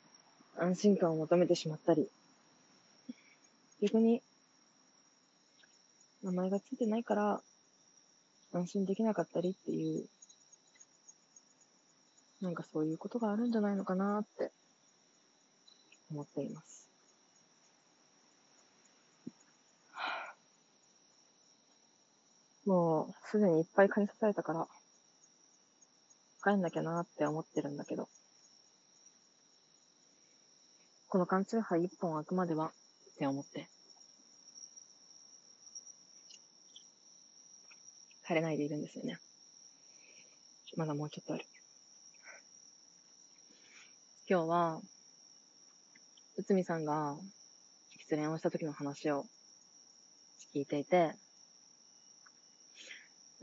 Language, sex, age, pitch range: Japanese, female, 20-39, 155-205 Hz